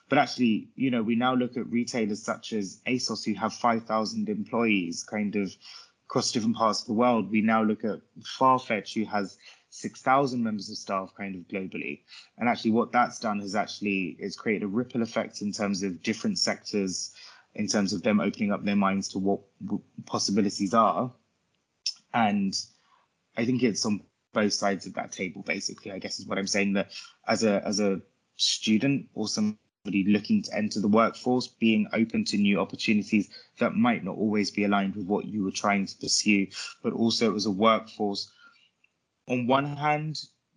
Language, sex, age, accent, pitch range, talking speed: English, male, 20-39, British, 100-120 Hz, 185 wpm